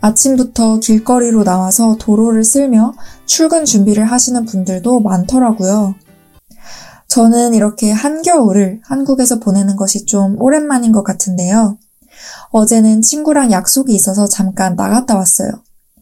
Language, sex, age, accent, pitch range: Korean, female, 20-39, native, 205-250 Hz